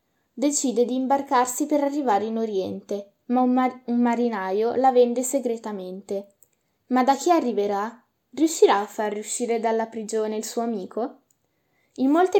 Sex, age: female, 10-29